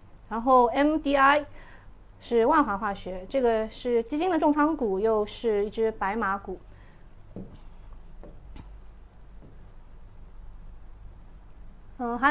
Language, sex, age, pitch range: Chinese, female, 30-49, 190-270 Hz